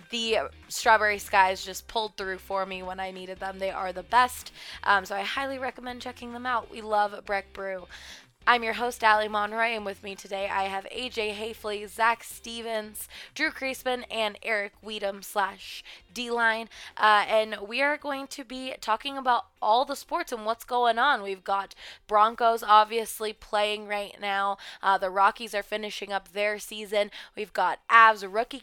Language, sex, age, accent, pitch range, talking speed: English, female, 20-39, American, 200-240 Hz, 175 wpm